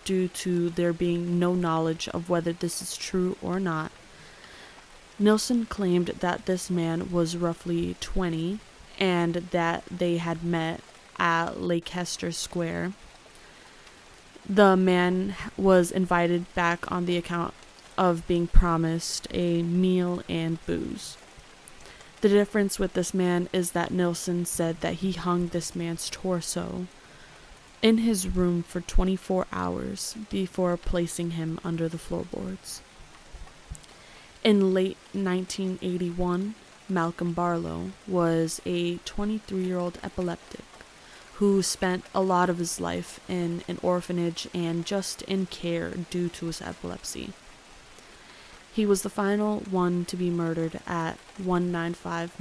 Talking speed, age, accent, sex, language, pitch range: 125 wpm, 20-39, American, female, English, 170-185 Hz